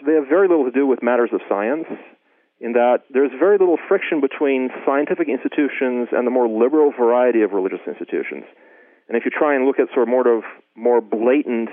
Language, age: English, 40-59